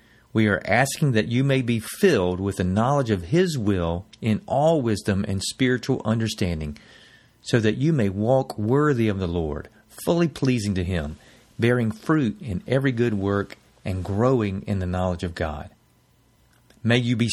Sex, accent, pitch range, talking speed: male, American, 100-125 Hz, 170 wpm